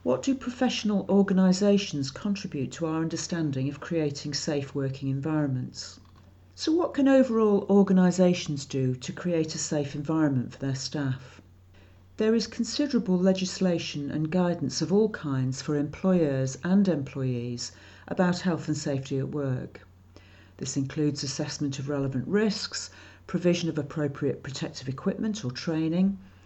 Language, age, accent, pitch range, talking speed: English, 50-69, British, 135-185 Hz, 135 wpm